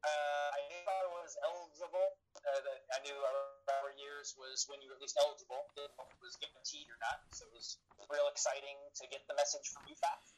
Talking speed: 210 wpm